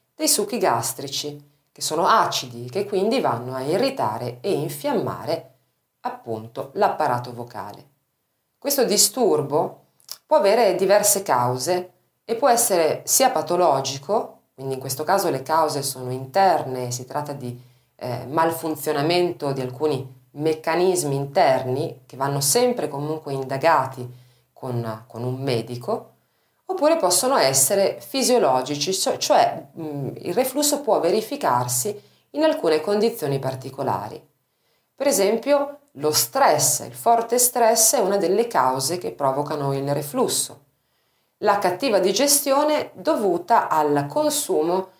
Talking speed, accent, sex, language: 115 wpm, native, female, Italian